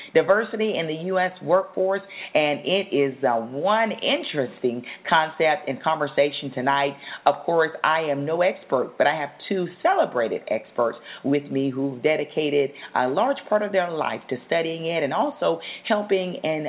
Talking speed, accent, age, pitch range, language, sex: 160 wpm, American, 40-59, 140-190 Hz, English, female